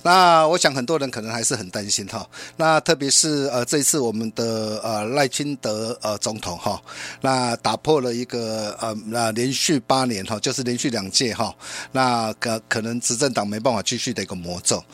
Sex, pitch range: male, 110-160 Hz